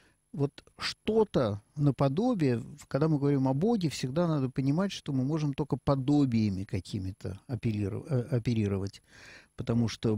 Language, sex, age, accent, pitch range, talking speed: Russian, male, 50-69, native, 120-155 Hz, 125 wpm